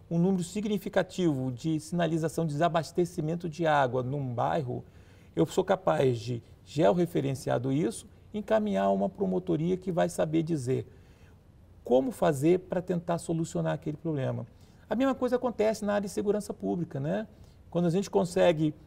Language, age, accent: Portuguese, 50-69, Brazilian